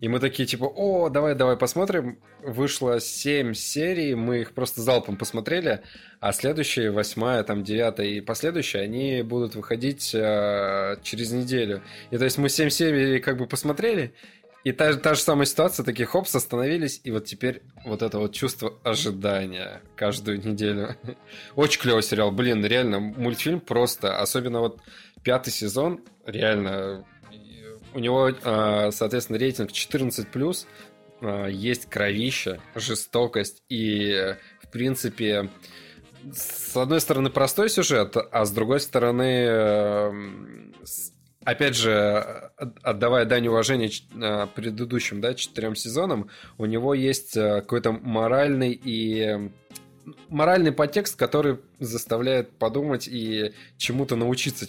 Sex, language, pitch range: male, Russian, 105-135 Hz